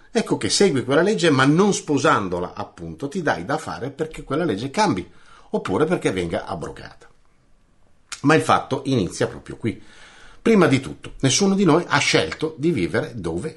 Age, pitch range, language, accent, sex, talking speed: 50-69, 100-165 Hz, Italian, native, male, 170 wpm